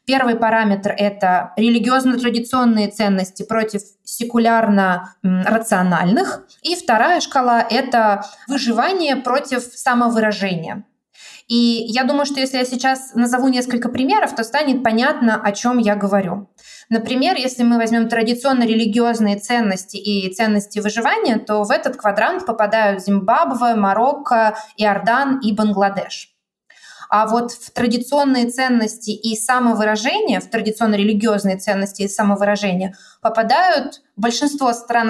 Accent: native